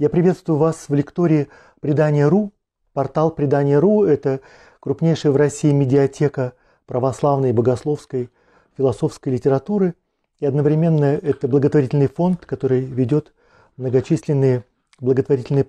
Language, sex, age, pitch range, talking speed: Russian, male, 40-59, 135-175 Hz, 120 wpm